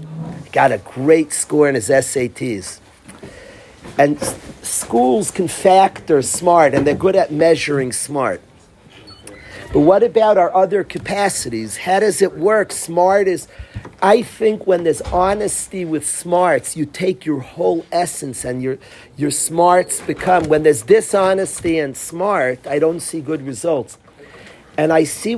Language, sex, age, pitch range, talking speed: English, male, 40-59, 140-185 Hz, 145 wpm